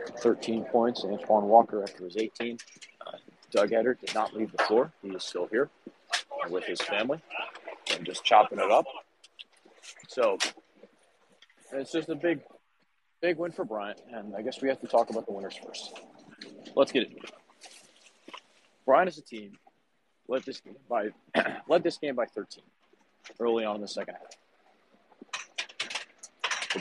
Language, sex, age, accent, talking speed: English, male, 40-59, American, 155 wpm